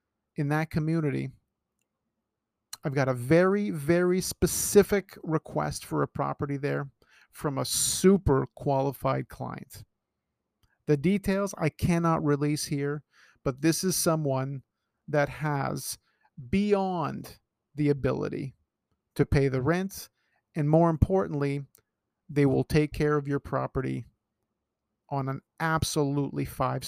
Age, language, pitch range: 50-69, English, 135-170 Hz